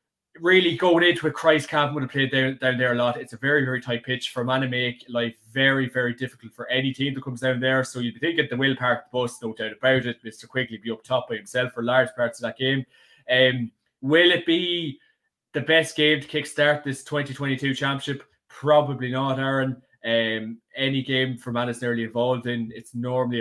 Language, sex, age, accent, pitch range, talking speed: English, male, 20-39, Irish, 120-135 Hz, 225 wpm